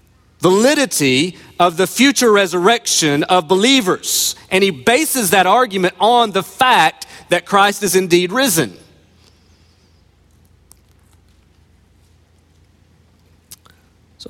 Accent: American